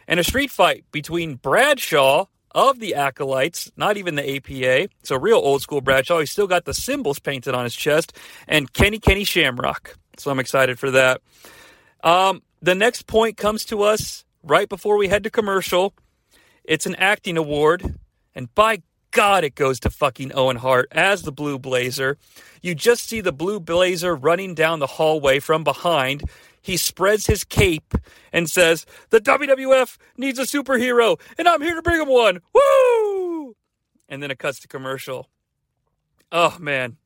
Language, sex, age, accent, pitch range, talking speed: English, male, 40-59, American, 140-215 Hz, 170 wpm